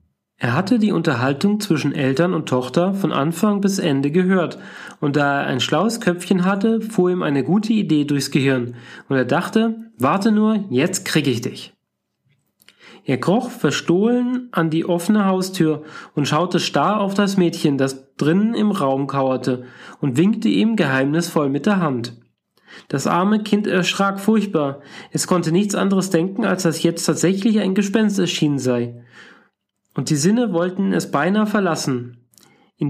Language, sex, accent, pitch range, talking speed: German, male, German, 145-200 Hz, 160 wpm